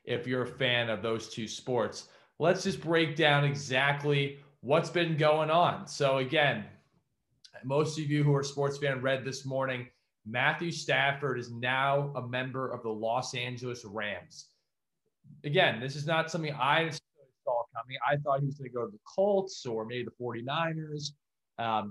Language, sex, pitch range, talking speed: English, male, 125-150 Hz, 175 wpm